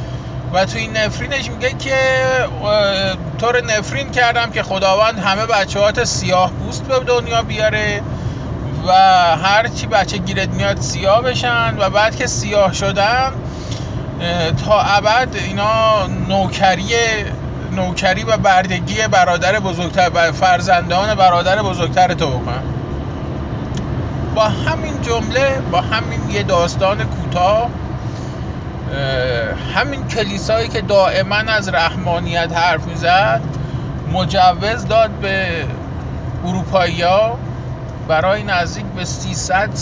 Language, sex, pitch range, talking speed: Persian, male, 125-185 Hz, 105 wpm